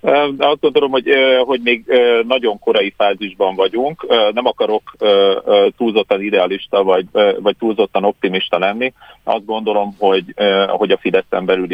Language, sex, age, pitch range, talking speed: Hungarian, male, 40-59, 100-125 Hz, 130 wpm